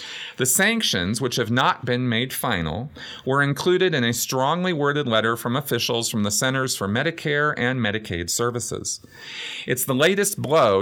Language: English